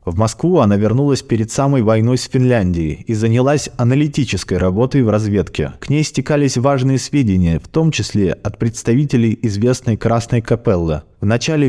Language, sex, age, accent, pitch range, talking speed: Russian, male, 20-39, native, 100-130 Hz, 155 wpm